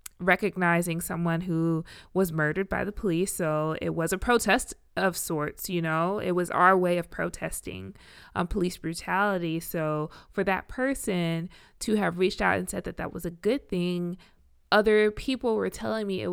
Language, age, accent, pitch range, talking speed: English, 20-39, American, 165-210 Hz, 175 wpm